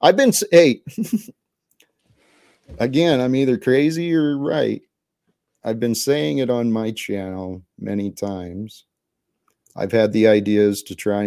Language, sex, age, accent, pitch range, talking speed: English, male, 40-59, American, 105-140 Hz, 130 wpm